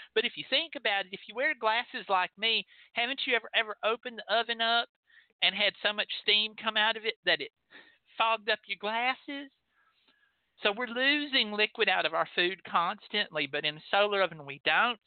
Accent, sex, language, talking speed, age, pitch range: American, male, English, 205 wpm, 50-69, 175-235 Hz